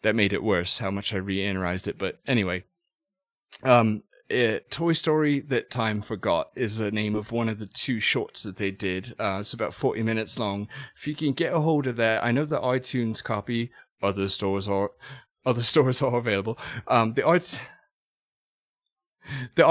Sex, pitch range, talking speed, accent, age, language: male, 105-125 Hz, 175 wpm, British, 30-49, English